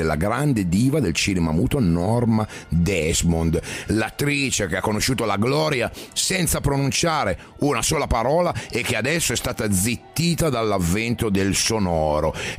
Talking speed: 135 wpm